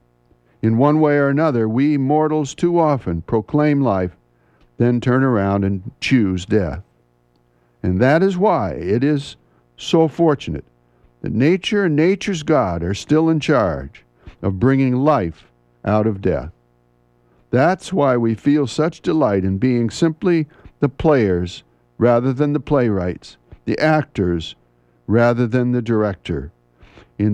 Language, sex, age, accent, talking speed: English, male, 60-79, American, 135 wpm